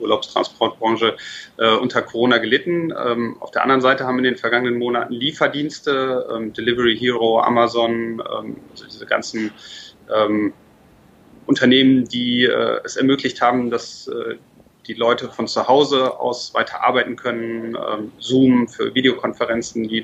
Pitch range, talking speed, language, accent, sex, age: 115-125 Hz, 140 wpm, German, German, male, 30-49